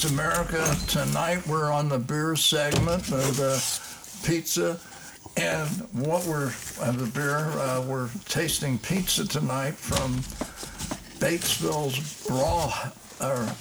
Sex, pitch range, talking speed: male, 130-155 Hz, 110 wpm